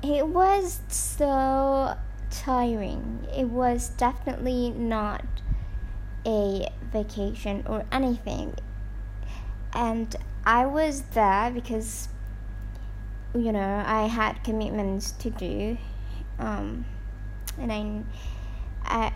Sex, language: male, English